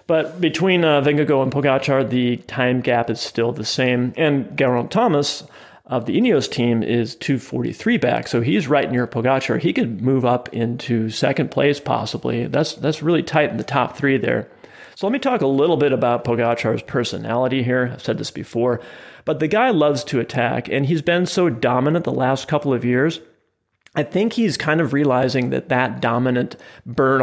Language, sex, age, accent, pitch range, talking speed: English, male, 40-59, American, 125-150 Hz, 190 wpm